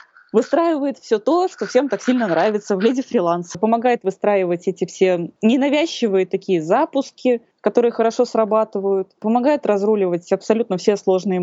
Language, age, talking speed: Russian, 20-39, 135 wpm